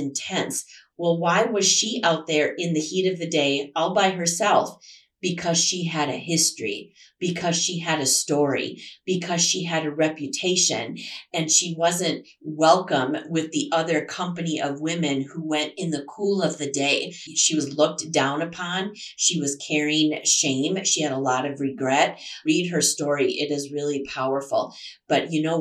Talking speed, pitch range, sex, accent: 175 wpm, 145-175 Hz, female, American